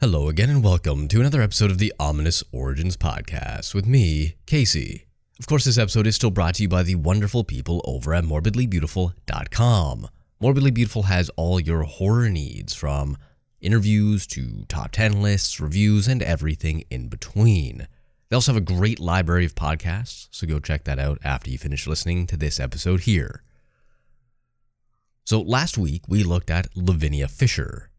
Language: English